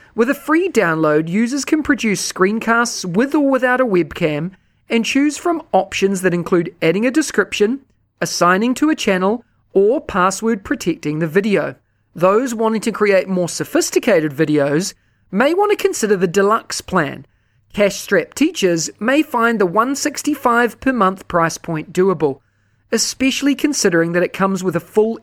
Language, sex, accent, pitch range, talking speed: English, male, Australian, 170-250 Hz, 150 wpm